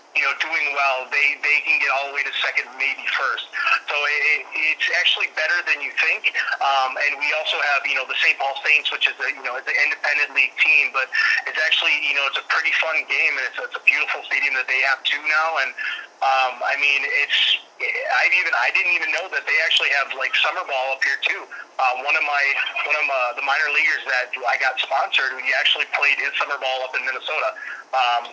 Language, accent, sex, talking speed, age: English, American, male, 235 wpm, 30-49